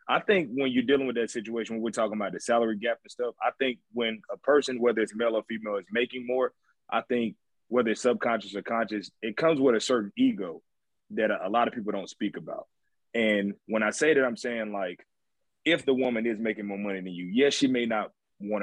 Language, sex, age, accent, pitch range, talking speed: English, male, 20-39, American, 105-135 Hz, 235 wpm